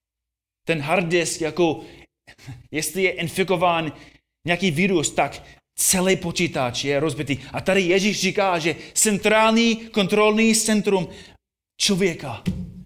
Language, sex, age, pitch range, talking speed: Czech, male, 30-49, 120-175 Hz, 105 wpm